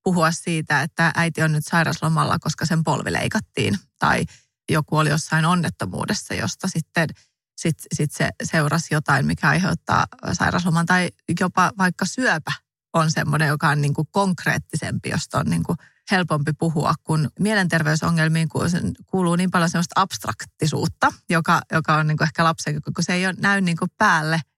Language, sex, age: Finnish, female, 30-49